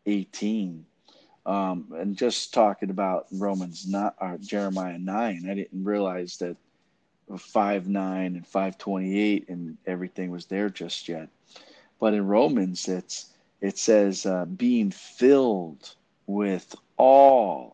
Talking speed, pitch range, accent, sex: 120 wpm, 90-110 Hz, American, male